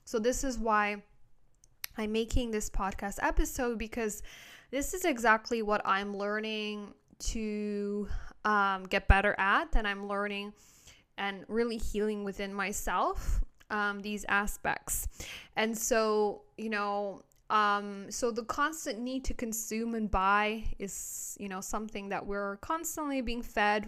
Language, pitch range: English, 200-235 Hz